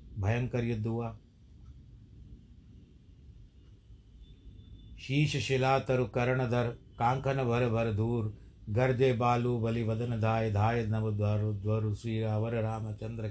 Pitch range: 105-120 Hz